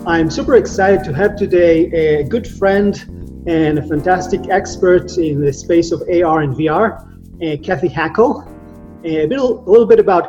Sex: male